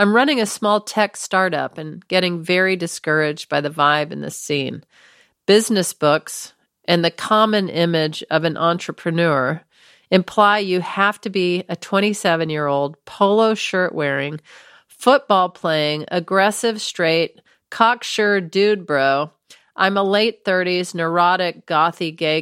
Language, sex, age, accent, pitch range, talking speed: English, female, 40-59, American, 160-220 Hz, 130 wpm